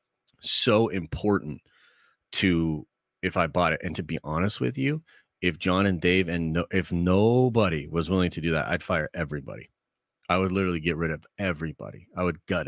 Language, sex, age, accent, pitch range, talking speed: English, male, 30-49, American, 85-105 Hz, 180 wpm